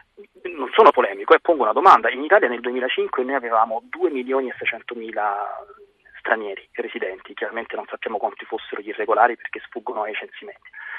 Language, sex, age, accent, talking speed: Italian, male, 30-49, native, 175 wpm